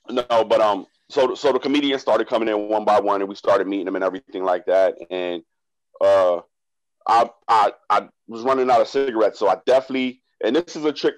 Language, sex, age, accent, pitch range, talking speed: English, male, 30-49, American, 105-130 Hz, 215 wpm